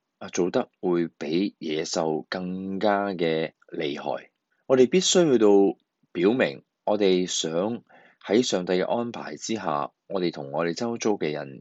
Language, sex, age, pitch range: Chinese, male, 20-39, 85-120 Hz